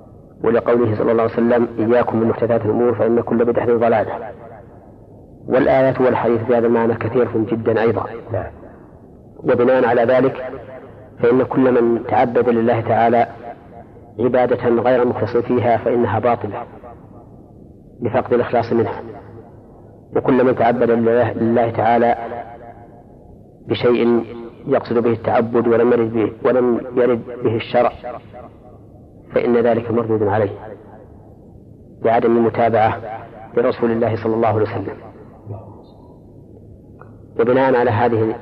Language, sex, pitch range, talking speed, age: Arabic, female, 115-120 Hz, 100 wpm, 40-59